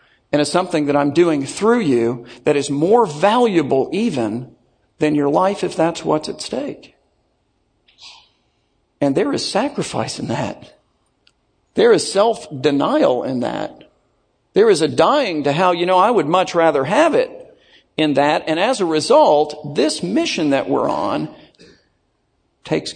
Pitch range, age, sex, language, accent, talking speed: 155-235 Hz, 50-69, male, English, American, 150 wpm